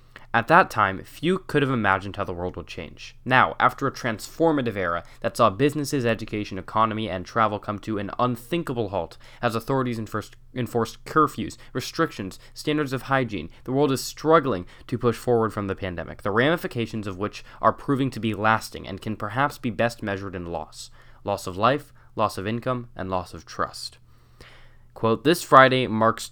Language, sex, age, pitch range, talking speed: English, male, 10-29, 100-125 Hz, 180 wpm